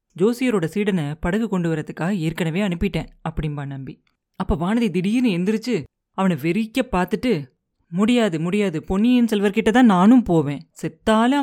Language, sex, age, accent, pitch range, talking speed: Tamil, female, 30-49, native, 175-230 Hz, 120 wpm